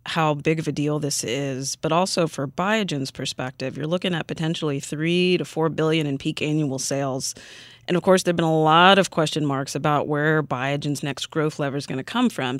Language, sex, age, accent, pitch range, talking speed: English, female, 30-49, American, 140-170 Hz, 220 wpm